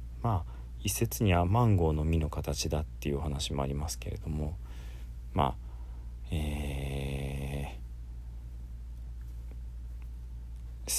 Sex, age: male, 40-59